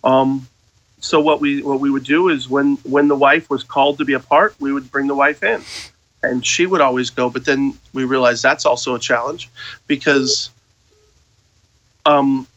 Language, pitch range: English, 125-160 Hz